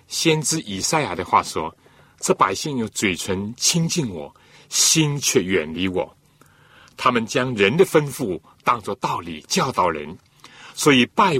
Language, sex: Chinese, male